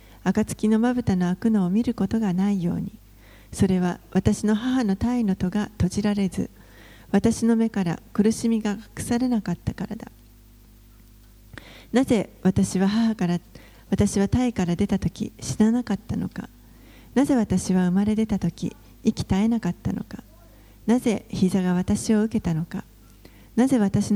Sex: female